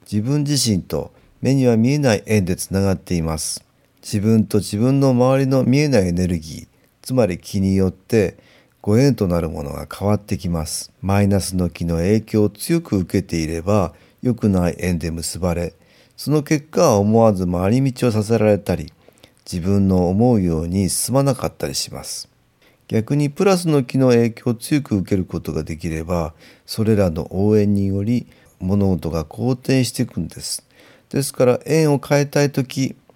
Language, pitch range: Japanese, 90-130 Hz